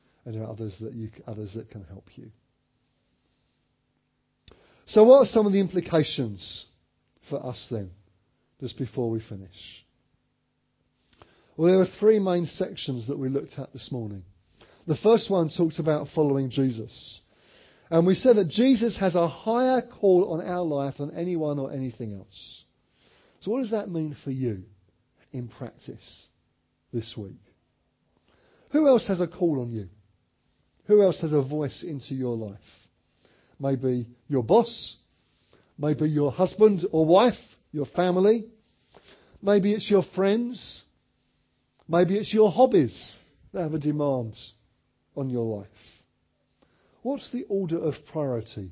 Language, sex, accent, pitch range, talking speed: English, male, British, 115-180 Hz, 145 wpm